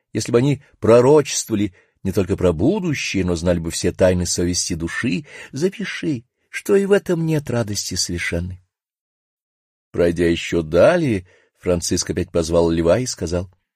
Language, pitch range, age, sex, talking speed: Russian, 95-155 Hz, 50-69, male, 140 wpm